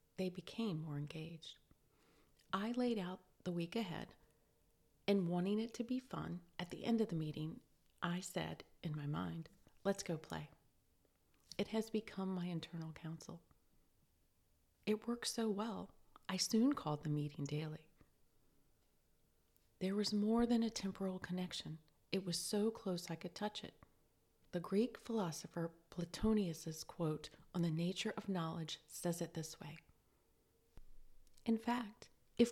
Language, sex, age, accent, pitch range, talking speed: English, female, 40-59, American, 165-220 Hz, 145 wpm